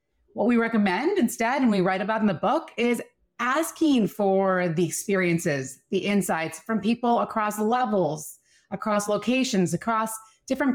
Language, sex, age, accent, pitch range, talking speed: English, female, 30-49, American, 175-230 Hz, 145 wpm